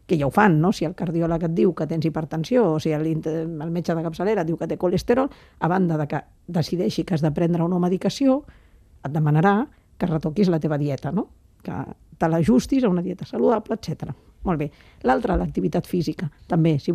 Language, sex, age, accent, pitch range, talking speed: Spanish, female, 50-69, Spanish, 165-205 Hz, 200 wpm